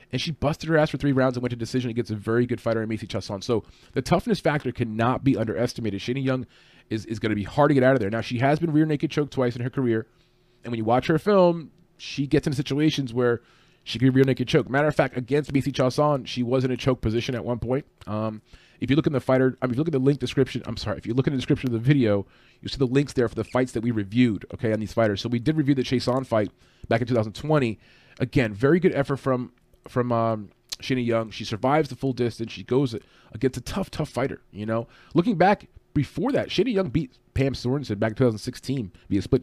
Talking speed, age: 260 wpm, 30-49